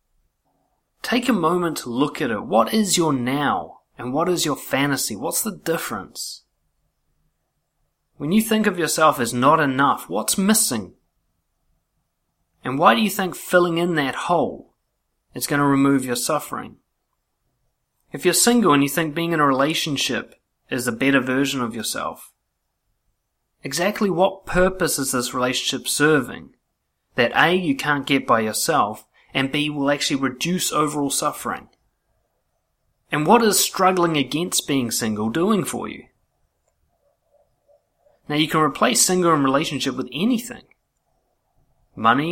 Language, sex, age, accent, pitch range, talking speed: English, male, 30-49, Australian, 130-180 Hz, 145 wpm